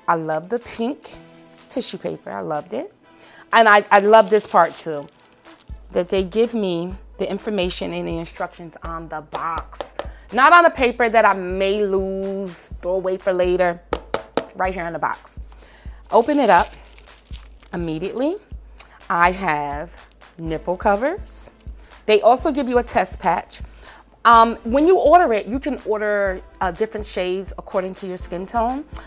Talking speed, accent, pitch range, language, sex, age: 155 wpm, American, 175-230 Hz, English, female, 30-49